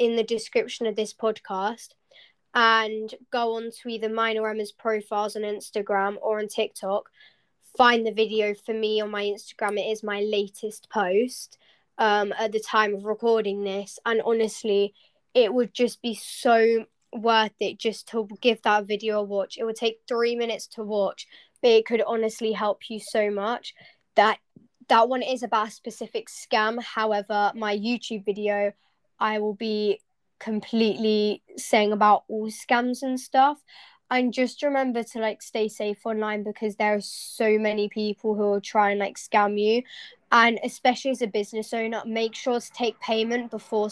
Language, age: English, 10-29